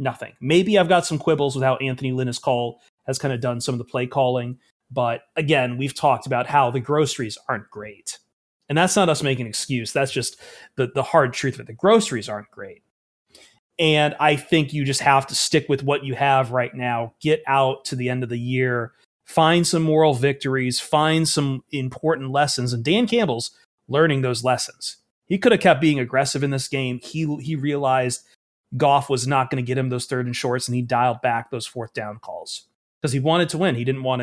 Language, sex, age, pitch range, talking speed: English, male, 30-49, 125-150 Hz, 215 wpm